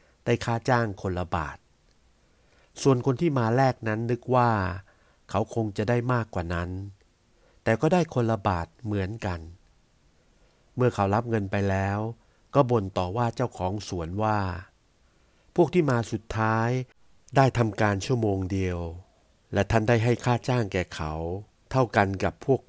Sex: male